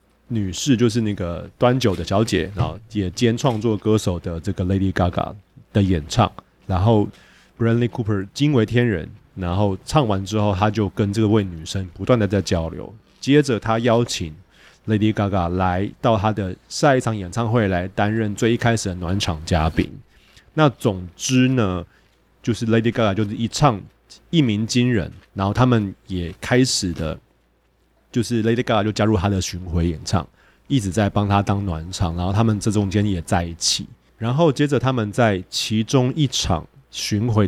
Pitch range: 95-120 Hz